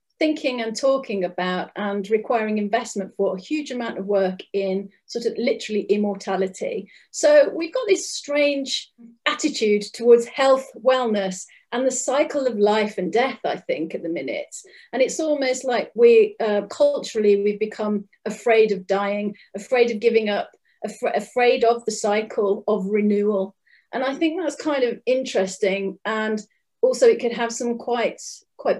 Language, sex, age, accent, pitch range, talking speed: English, female, 40-59, British, 205-250 Hz, 160 wpm